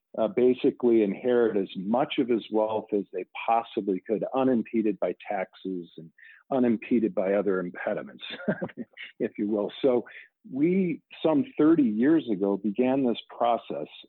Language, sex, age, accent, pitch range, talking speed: English, male, 50-69, American, 105-125 Hz, 135 wpm